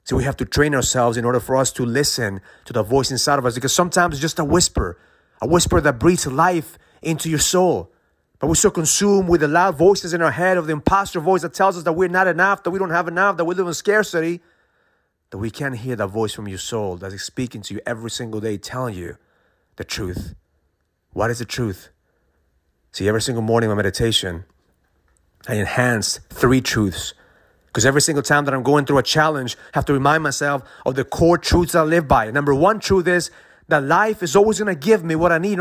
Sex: male